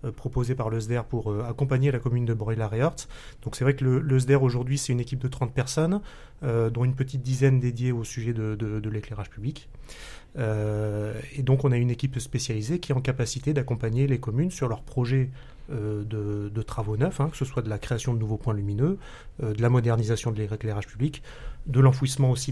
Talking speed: 210 wpm